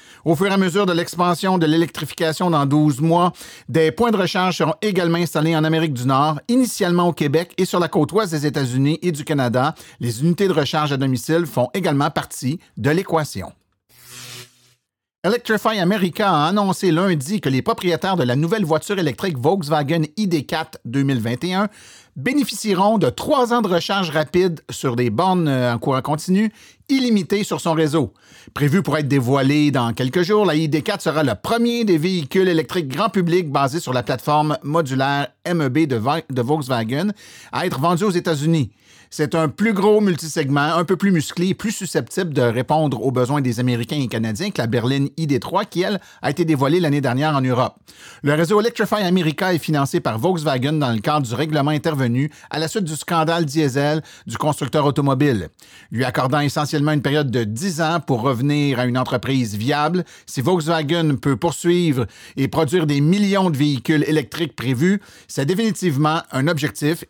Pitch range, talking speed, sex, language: 140-180 Hz, 175 wpm, male, French